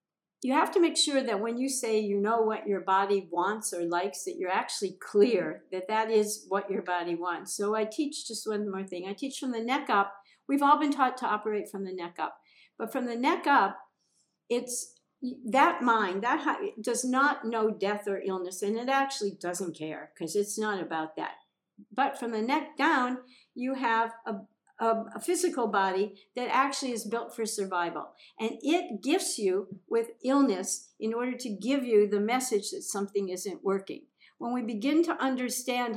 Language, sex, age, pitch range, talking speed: English, female, 50-69, 195-255 Hz, 195 wpm